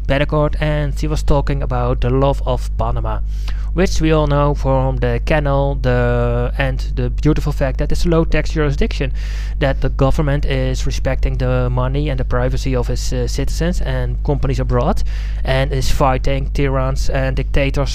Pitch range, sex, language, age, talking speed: 130-165 Hz, male, English, 20-39, 160 wpm